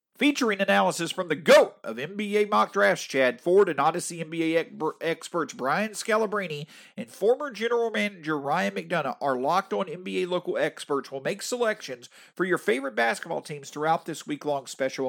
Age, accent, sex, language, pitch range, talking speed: 40-59, American, male, English, 165-225 Hz, 165 wpm